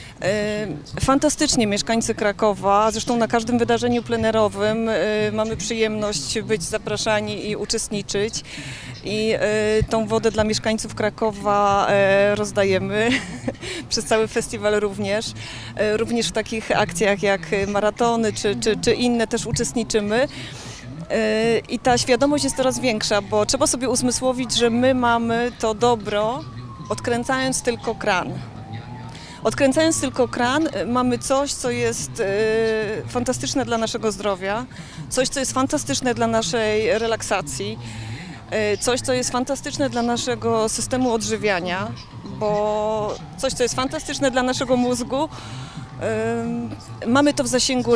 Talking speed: 120 wpm